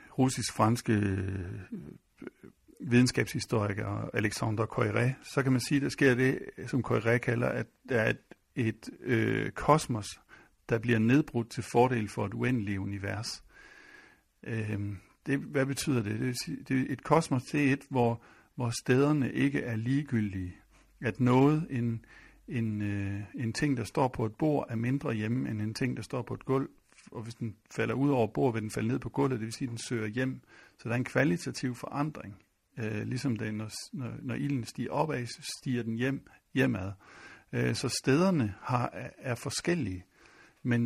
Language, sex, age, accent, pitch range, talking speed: Danish, male, 60-79, native, 110-135 Hz, 170 wpm